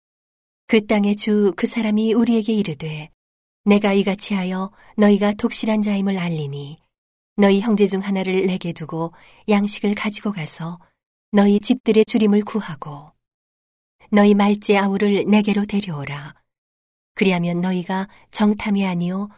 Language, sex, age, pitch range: Korean, female, 40-59, 165-210 Hz